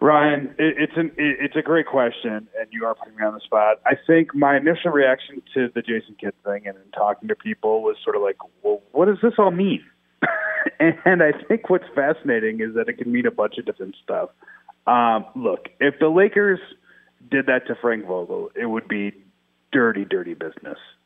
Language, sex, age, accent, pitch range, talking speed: English, male, 30-49, American, 105-160 Hz, 200 wpm